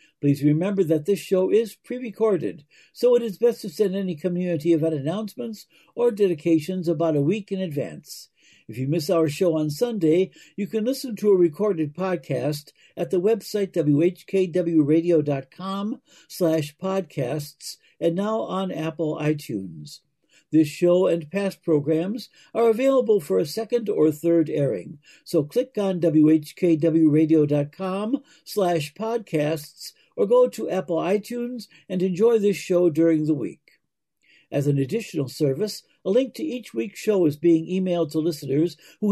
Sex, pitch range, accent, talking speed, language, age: male, 155-205 Hz, American, 145 wpm, English, 60-79